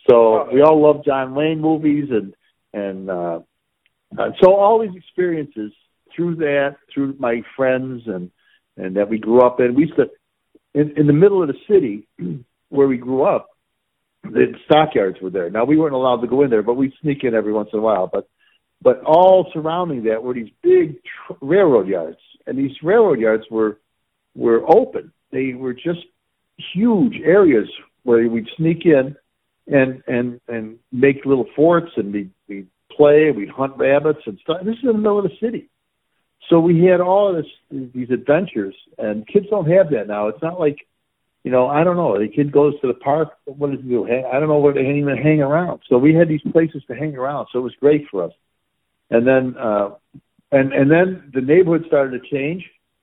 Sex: male